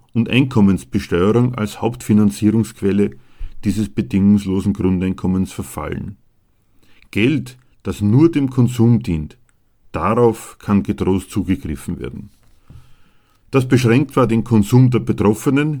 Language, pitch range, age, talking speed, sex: German, 95-120 Hz, 50-69, 100 wpm, male